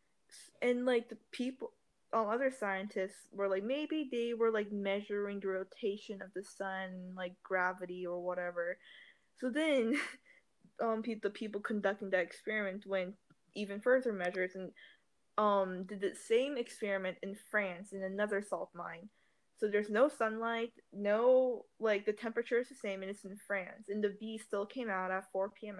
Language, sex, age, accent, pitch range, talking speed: English, female, 10-29, American, 195-235 Hz, 165 wpm